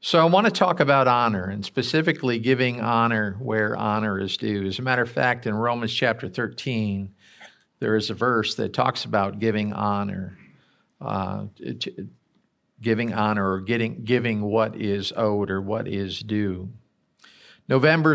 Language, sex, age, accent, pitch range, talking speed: English, male, 50-69, American, 105-130 Hz, 160 wpm